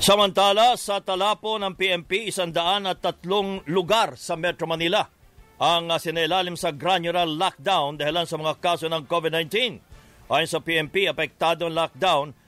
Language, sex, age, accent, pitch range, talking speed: English, male, 50-69, Filipino, 160-185 Hz, 140 wpm